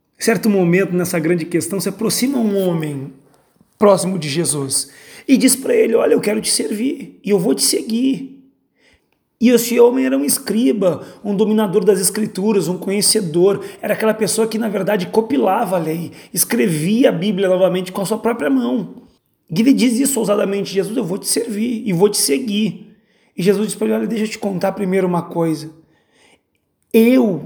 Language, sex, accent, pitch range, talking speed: Portuguese, male, Brazilian, 180-225 Hz, 185 wpm